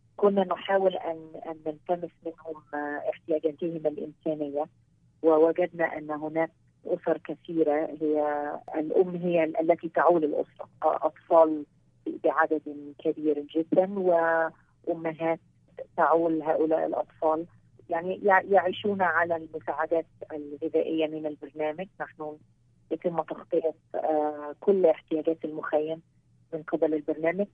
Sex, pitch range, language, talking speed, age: female, 150-170 Hz, Arabic, 95 wpm, 30-49